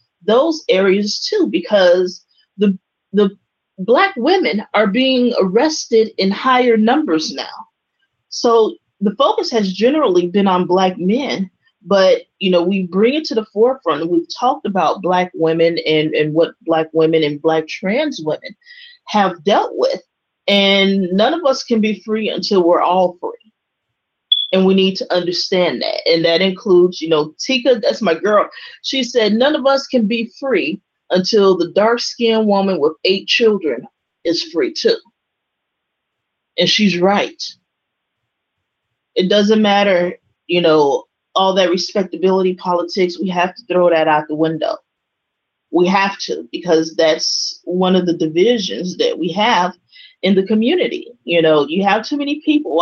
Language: English